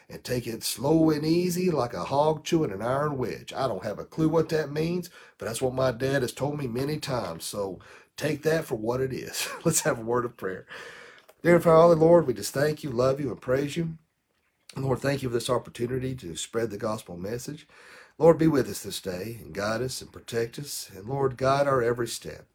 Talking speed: 225 wpm